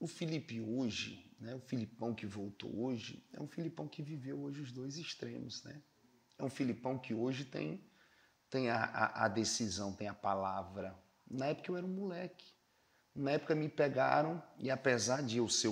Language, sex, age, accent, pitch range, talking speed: Portuguese, male, 30-49, Brazilian, 110-150 Hz, 185 wpm